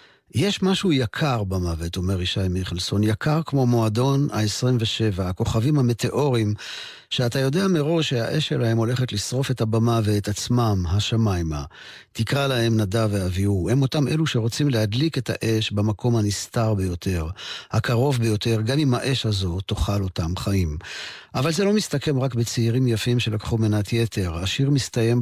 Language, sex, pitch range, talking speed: Hebrew, male, 100-125 Hz, 145 wpm